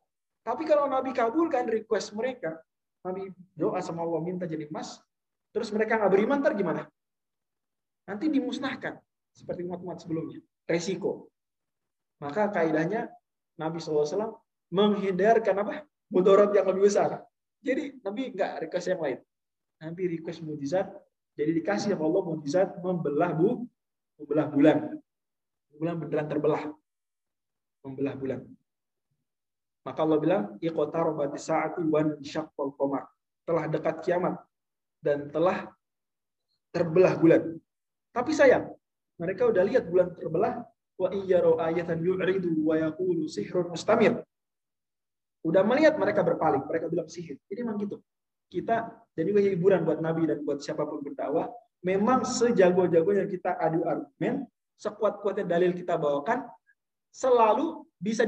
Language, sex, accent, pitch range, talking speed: Indonesian, male, native, 160-220 Hz, 110 wpm